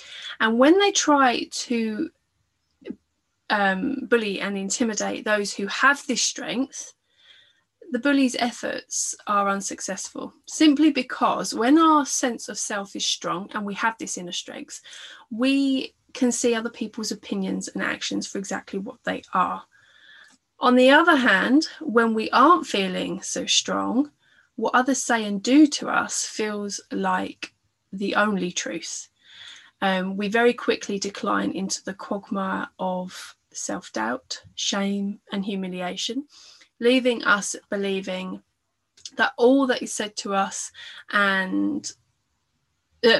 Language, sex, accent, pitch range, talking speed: English, female, British, 200-265 Hz, 130 wpm